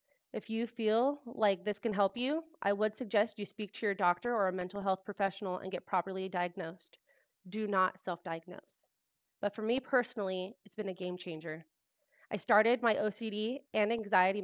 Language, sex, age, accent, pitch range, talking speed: English, female, 30-49, American, 185-220 Hz, 180 wpm